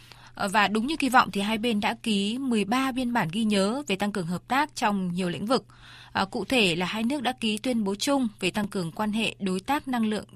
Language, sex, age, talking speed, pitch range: Vietnamese, female, 20-39, 255 wpm, 185-240 Hz